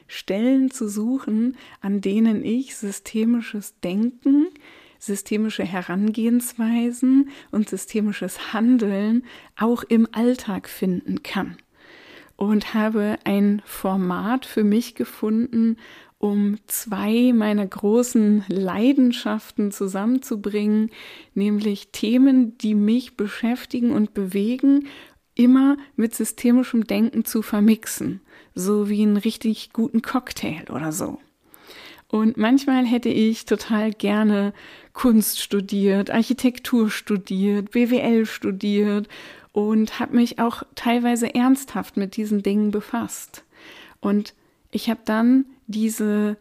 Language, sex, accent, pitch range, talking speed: German, female, German, 210-245 Hz, 100 wpm